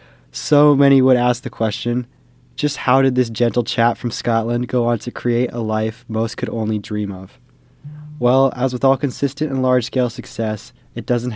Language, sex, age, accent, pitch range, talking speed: English, male, 20-39, American, 115-130 Hz, 185 wpm